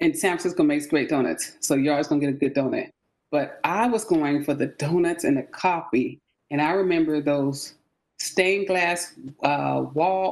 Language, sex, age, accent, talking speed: English, female, 30-49, American, 185 wpm